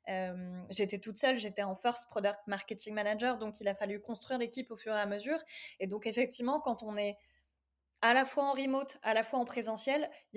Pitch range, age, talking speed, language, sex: 205-245 Hz, 20-39, 220 wpm, French, female